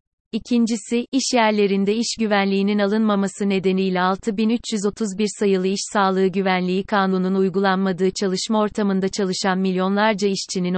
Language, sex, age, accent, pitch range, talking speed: Turkish, female, 30-49, native, 190-220 Hz, 105 wpm